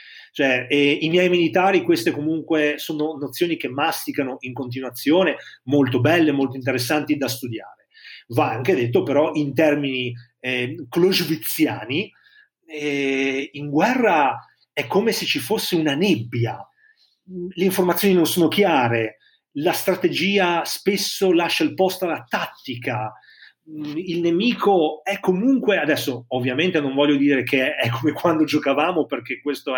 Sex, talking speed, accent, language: male, 125 wpm, native, Italian